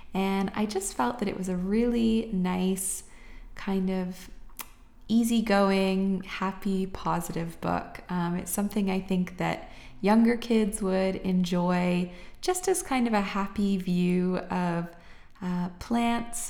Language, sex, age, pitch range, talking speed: English, female, 20-39, 180-220 Hz, 130 wpm